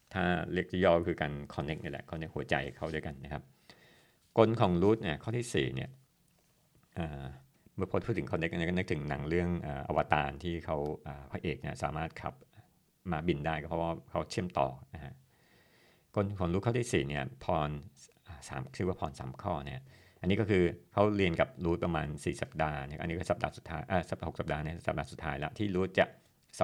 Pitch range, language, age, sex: 75-100 Hz, Thai, 60-79, male